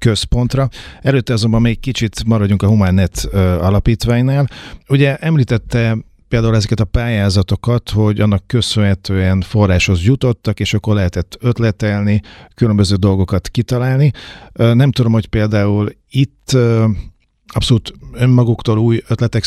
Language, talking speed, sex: Hungarian, 110 wpm, male